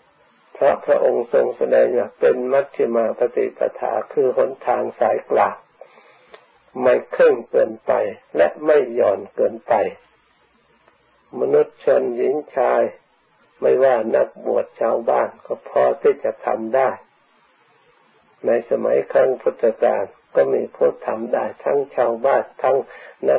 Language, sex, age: Thai, male, 60-79